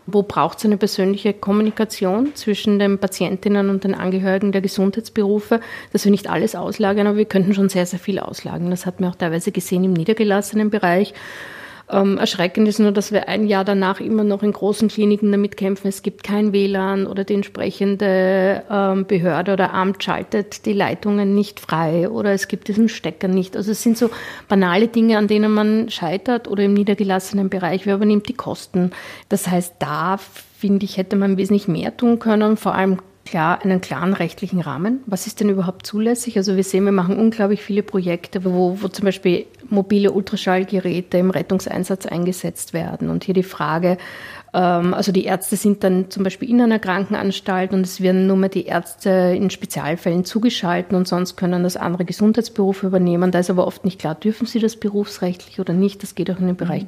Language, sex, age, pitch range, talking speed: German, female, 50-69, 185-210 Hz, 195 wpm